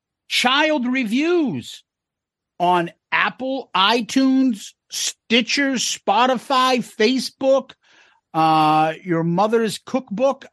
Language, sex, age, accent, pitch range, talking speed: English, male, 50-69, American, 170-255 Hz, 70 wpm